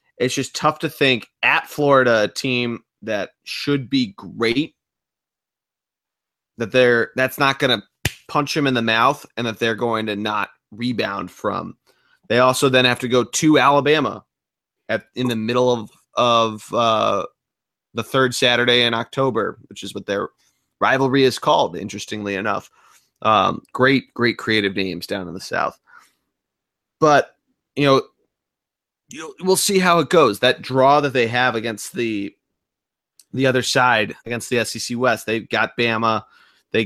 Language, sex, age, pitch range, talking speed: English, male, 30-49, 110-135 Hz, 155 wpm